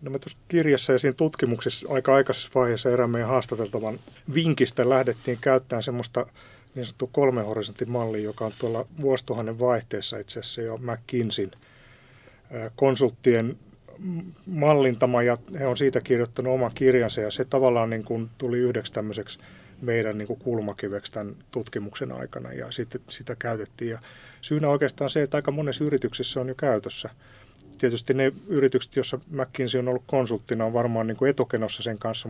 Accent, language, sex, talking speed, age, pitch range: native, Finnish, male, 150 wpm, 30-49, 115-135 Hz